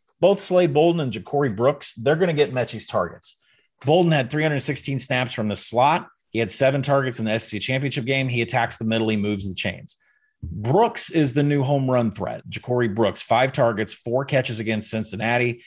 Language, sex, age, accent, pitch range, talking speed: English, male, 30-49, American, 110-145 Hz, 195 wpm